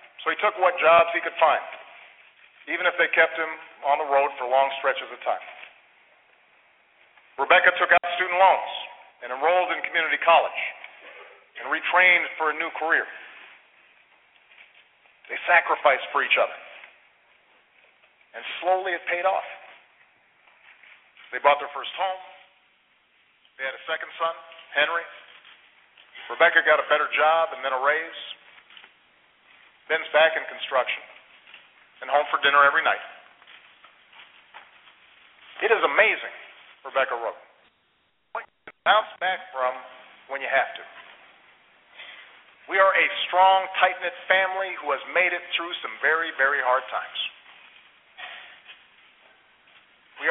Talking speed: 130 wpm